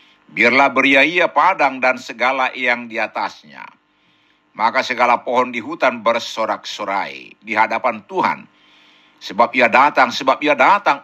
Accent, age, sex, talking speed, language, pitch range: native, 60-79, male, 125 wpm, Indonesian, 120-145 Hz